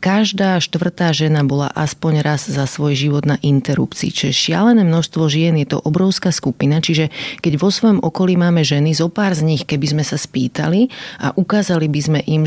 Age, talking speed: 30-49, 190 wpm